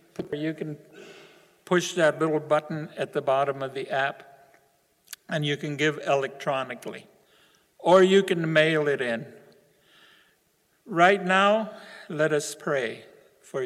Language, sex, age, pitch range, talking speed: English, male, 60-79, 155-210 Hz, 125 wpm